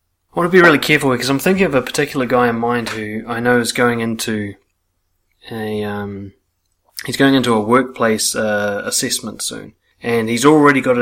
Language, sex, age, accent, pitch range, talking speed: English, male, 30-49, Australian, 105-140 Hz, 190 wpm